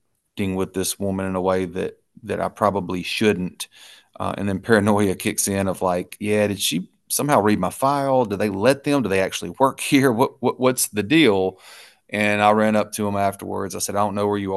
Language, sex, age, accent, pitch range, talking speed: English, male, 30-49, American, 95-110 Hz, 225 wpm